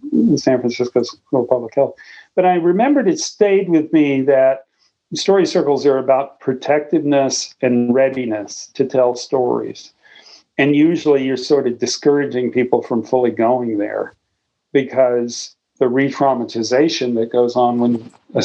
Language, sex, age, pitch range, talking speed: English, male, 50-69, 130-160 Hz, 135 wpm